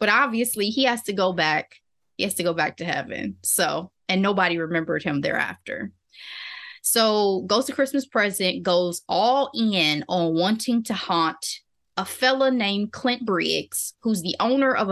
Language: English